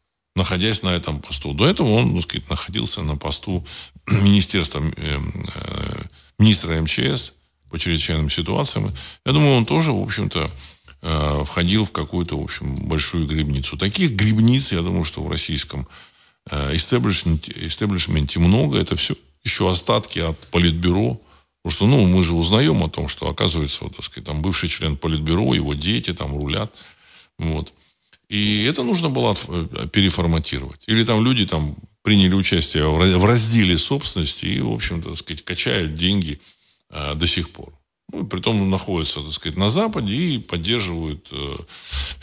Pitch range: 75-100 Hz